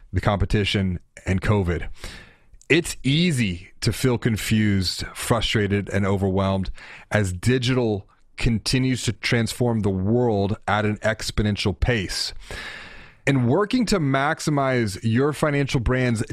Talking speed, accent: 110 wpm, American